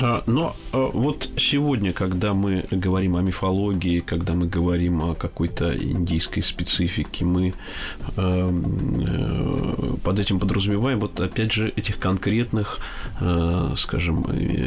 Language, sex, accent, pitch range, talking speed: Russian, male, native, 90-115 Hz, 100 wpm